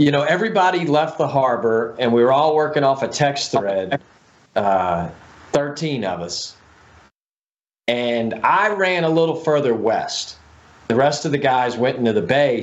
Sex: male